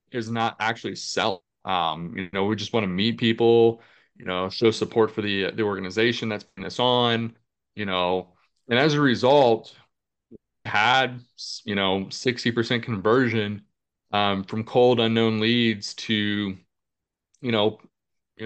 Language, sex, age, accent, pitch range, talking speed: English, male, 20-39, American, 105-120 Hz, 155 wpm